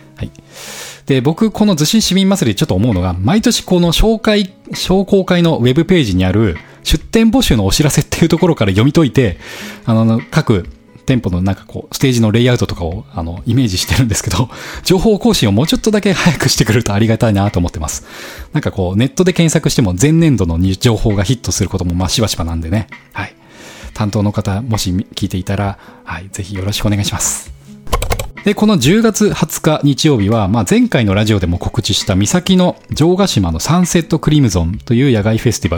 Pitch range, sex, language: 100-160 Hz, male, Japanese